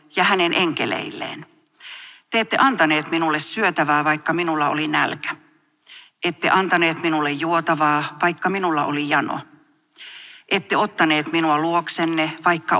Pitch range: 150-200 Hz